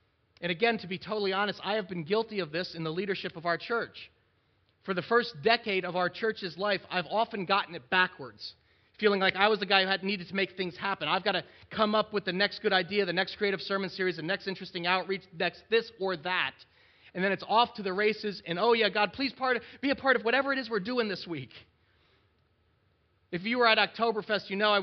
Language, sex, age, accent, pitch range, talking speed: English, male, 30-49, American, 175-215 Hz, 235 wpm